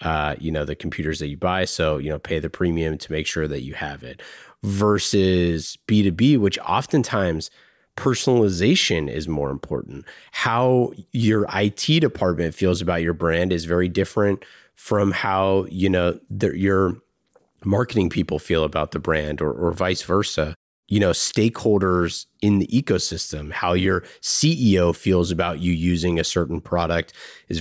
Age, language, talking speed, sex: 30-49, English, 155 wpm, male